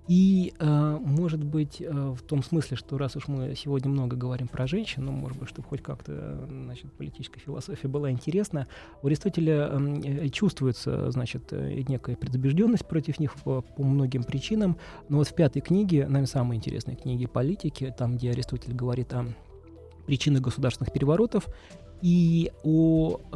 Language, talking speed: Russian, 145 wpm